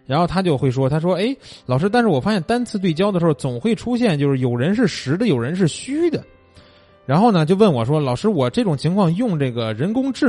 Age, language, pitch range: 20-39, Chinese, 130-215 Hz